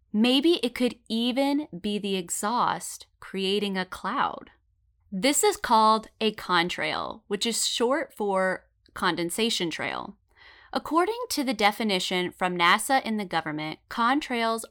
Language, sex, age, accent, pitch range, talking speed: English, female, 20-39, American, 170-245 Hz, 125 wpm